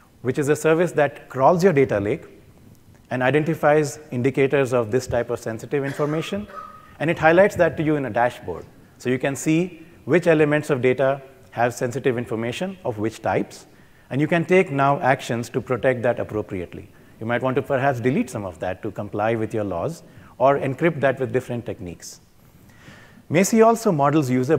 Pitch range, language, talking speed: 120-155 Hz, English, 185 wpm